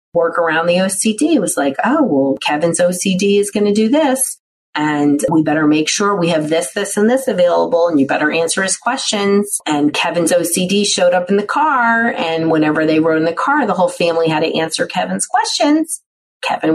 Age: 40-59